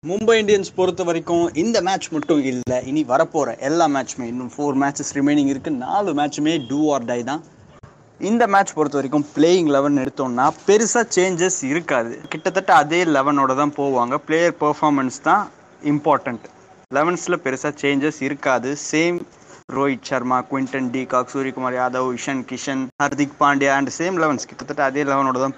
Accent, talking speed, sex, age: native, 150 wpm, male, 20-39